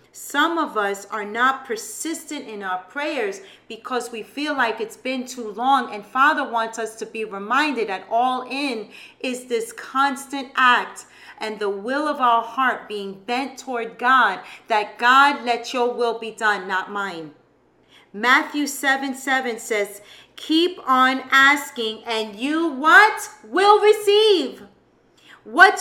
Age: 40-59